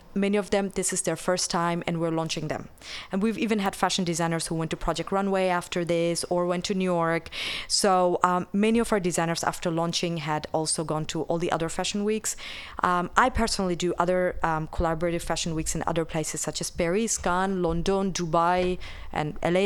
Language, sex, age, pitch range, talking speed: English, female, 30-49, 160-190 Hz, 205 wpm